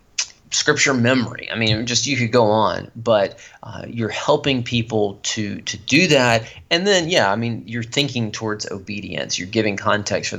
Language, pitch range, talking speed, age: English, 110-130 Hz, 180 wpm, 30-49